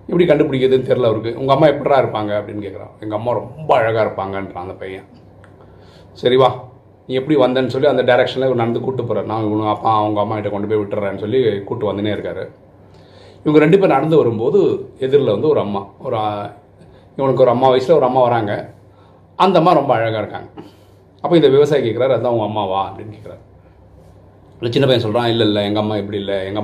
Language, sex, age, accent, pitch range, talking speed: Tamil, male, 30-49, native, 100-130 Hz, 185 wpm